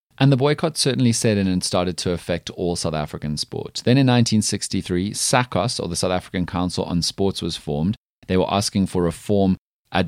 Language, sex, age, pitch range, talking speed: English, male, 30-49, 80-105 Hz, 195 wpm